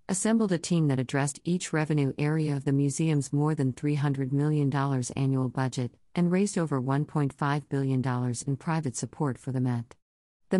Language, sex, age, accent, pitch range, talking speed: English, female, 50-69, American, 130-155 Hz, 165 wpm